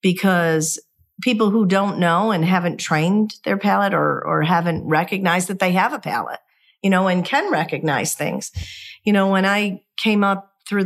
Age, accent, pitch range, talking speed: 50-69, American, 160-200 Hz, 175 wpm